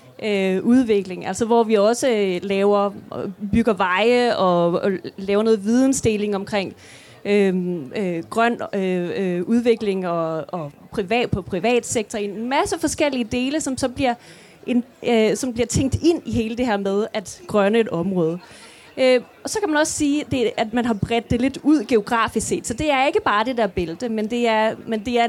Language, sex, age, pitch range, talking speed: Danish, female, 30-49, 205-260 Hz, 165 wpm